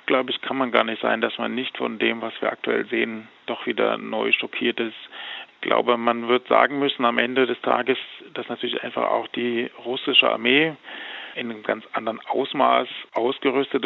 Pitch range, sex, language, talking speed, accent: 120-135 Hz, male, German, 190 wpm, German